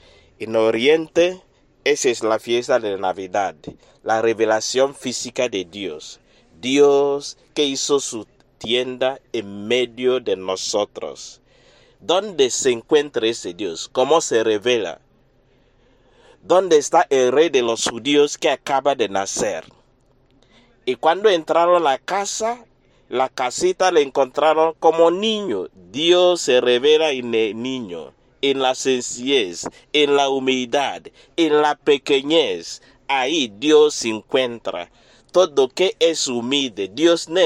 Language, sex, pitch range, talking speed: English, male, 120-170 Hz, 125 wpm